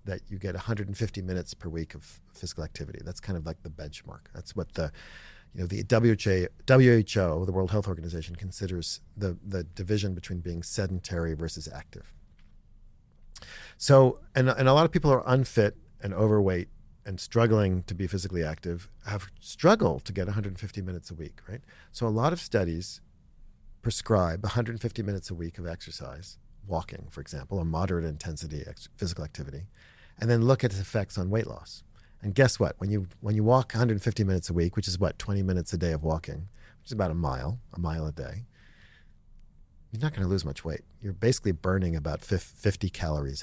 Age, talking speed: 40-59, 190 wpm